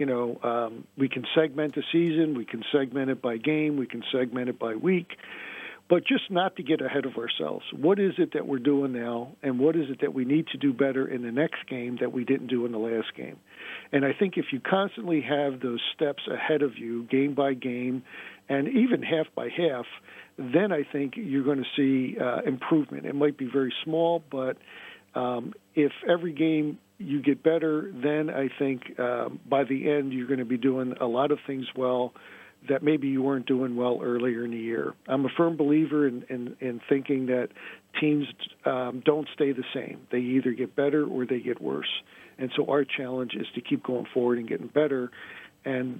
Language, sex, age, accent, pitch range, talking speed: English, male, 50-69, American, 125-145 Hz, 210 wpm